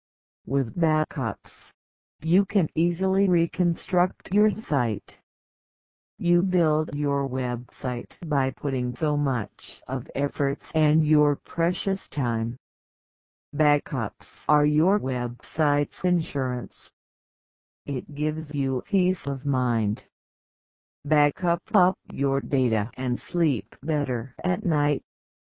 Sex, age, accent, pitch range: female, 50-69, American, 130-170 Hz